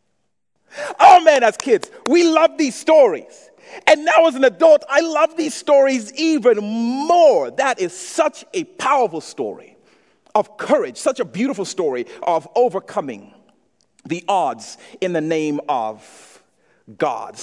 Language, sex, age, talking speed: English, male, 50-69, 140 wpm